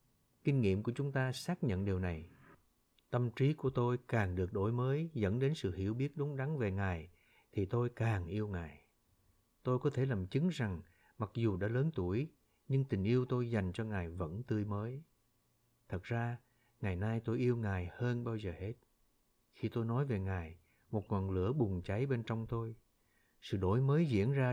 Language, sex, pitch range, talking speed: Vietnamese, male, 100-125 Hz, 200 wpm